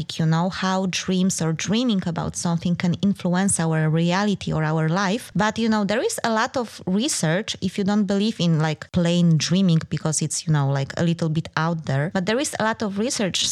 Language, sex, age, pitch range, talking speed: English, female, 20-39, 175-220 Hz, 220 wpm